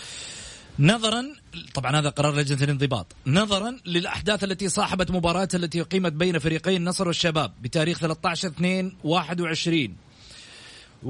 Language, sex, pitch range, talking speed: Arabic, male, 160-190 Hz, 105 wpm